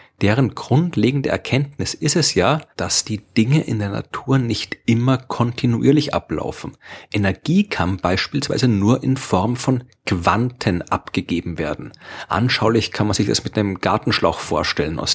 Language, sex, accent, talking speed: German, male, German, 145 wpm